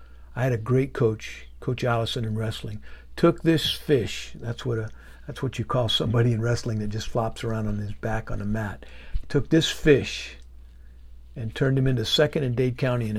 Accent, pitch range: American, 105-130 Hz